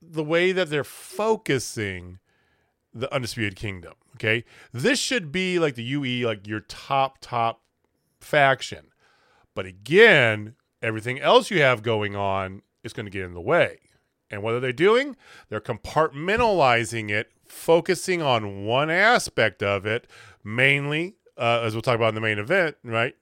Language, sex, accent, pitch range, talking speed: English, male, American, 105-150 Hz, 155 wpm